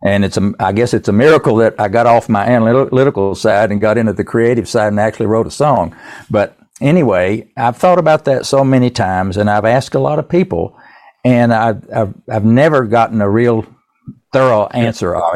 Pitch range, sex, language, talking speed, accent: 100-120 Hz, male, English, 205 wpm, American